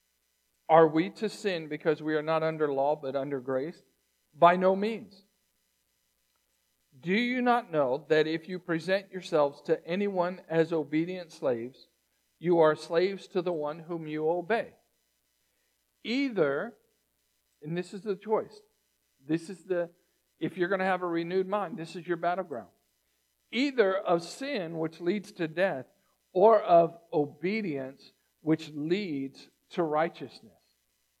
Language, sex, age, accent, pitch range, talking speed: English, male, 50-69, American, 155-215 Hz, 140 wpm